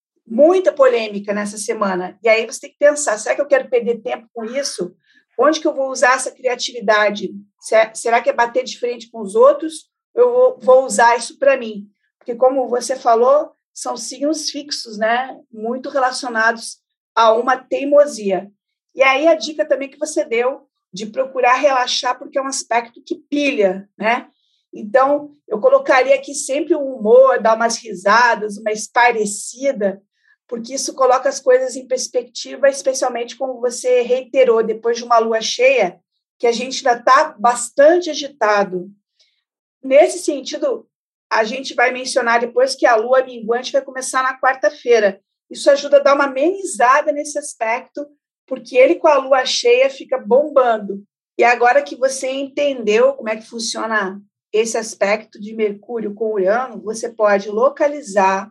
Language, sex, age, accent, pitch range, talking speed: Portuguese, female, 50-69, Brazilian, 225-285 Hz, 160 wpm